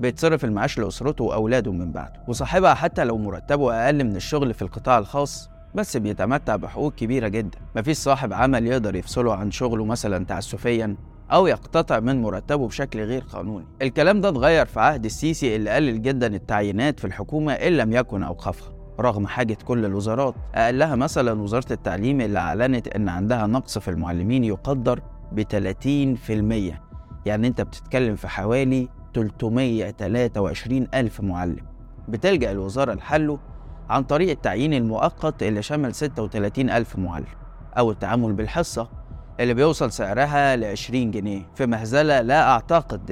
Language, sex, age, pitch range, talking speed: Arabic, male, 20-39, 105-135 Hz, 145 wpm